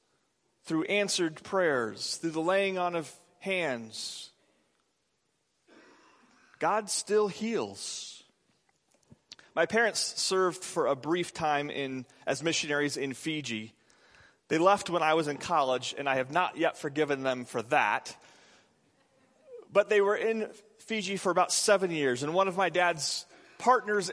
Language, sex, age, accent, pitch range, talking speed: English, male, 30-49, American, 155-200 Hz, 135 wpm